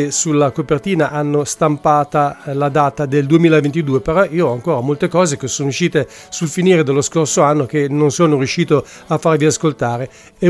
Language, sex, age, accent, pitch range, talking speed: English, male, 40-59, Italian, 145-165 Hz, 170 wpm